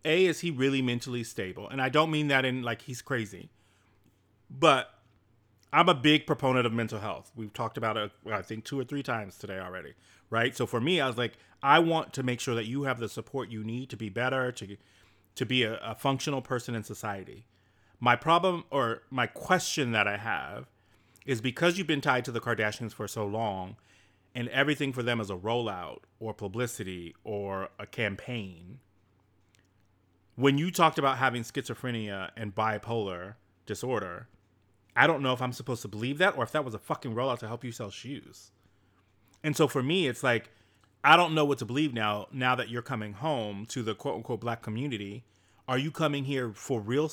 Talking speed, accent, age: 200 wpm, American, 30-49